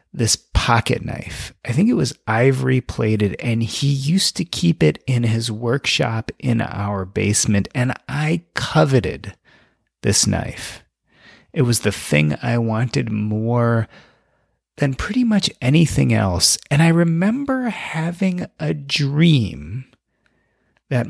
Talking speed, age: 130 wpm, 30-49